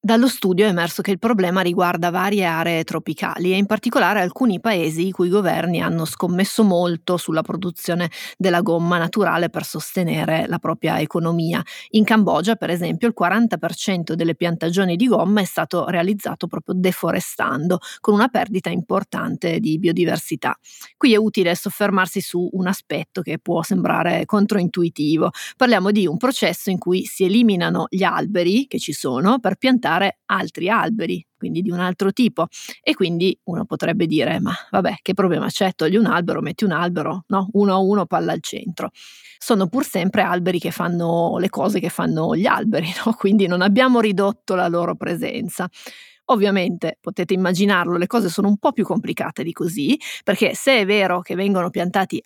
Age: 30-49